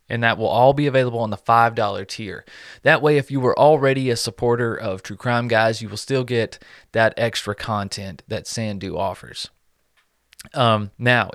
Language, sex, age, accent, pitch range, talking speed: English, male, 30-49, American, 105-125 Hz, 185 wpm